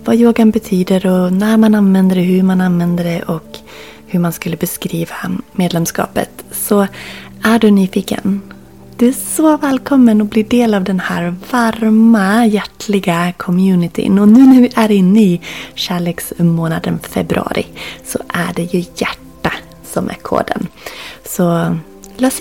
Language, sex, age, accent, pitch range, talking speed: Swedish, female, 30-49, native, 165-220 Hz, 145 wpm